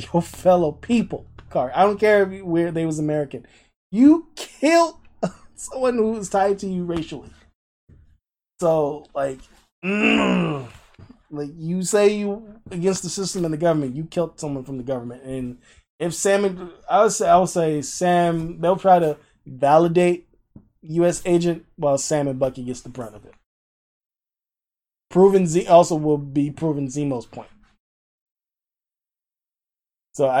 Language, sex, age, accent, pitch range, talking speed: English, male, 20-39, American, 135-180 Hz, 150 wpm